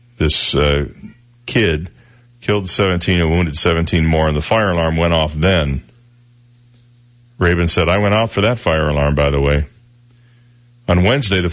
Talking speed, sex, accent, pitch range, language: 160 wpm, male, American, 80-115 Hz, English